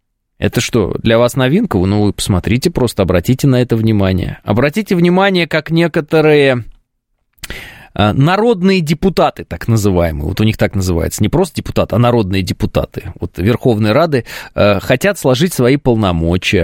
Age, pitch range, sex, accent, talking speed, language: 20-39, 110-155 Hz, male, native, 140 wpm, Russian